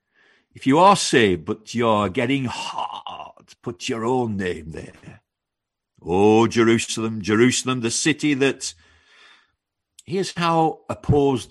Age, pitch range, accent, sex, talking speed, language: 50-69, 100-145 Hz, British, male, 115 wpm, English